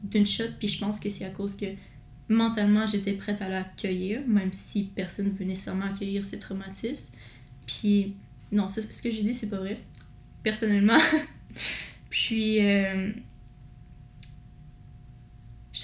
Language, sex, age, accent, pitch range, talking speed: French, female, 20-39, Canadian, 190-220 Hz, 135 wpm